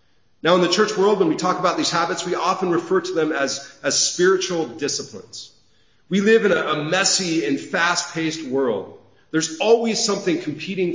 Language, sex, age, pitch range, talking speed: English, male, 40-59, 145-195 Hz, 180 wpm